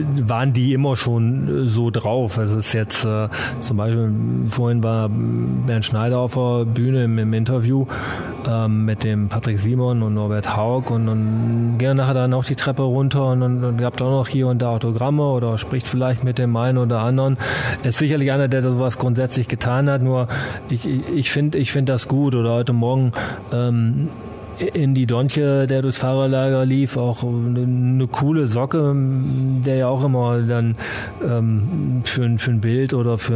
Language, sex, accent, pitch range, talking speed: German, male, German, 115-130 Hz, 185 wpm